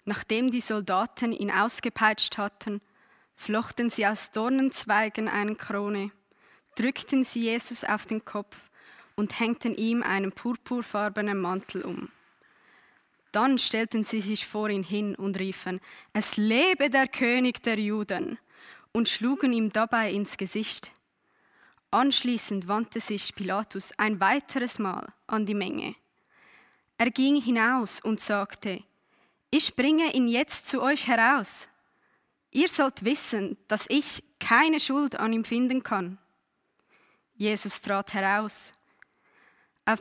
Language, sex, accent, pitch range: German, female, Swiss, 205-250 Hz